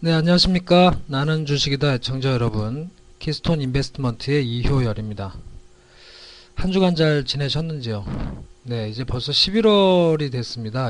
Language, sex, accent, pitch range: Korean, male, native, 120-165 Hz